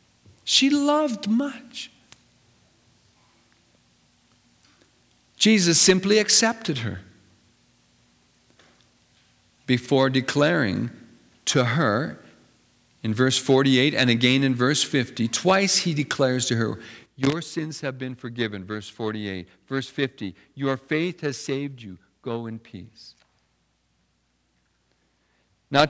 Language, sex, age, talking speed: English, male, 50-69, 95 wpm